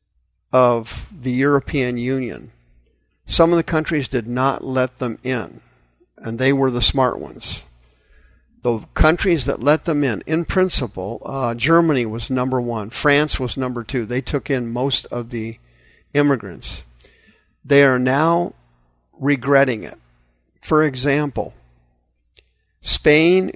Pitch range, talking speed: 100-145 Hz, 130 wpm